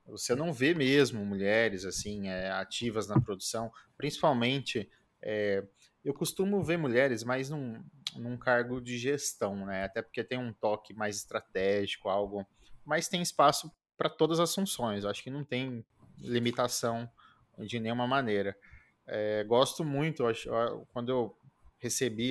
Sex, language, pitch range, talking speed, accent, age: male, Portuguese, 105-130 Hz, 145 wpm, Brazilian, 20-39